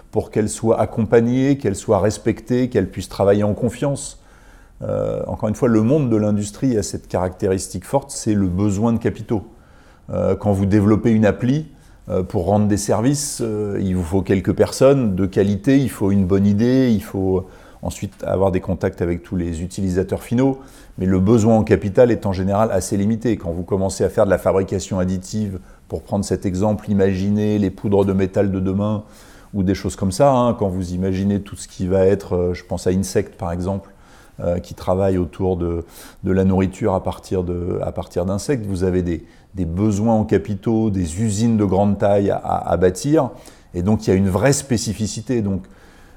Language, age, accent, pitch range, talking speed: English, 30-49, French, 95-110 Hz, 200 wpm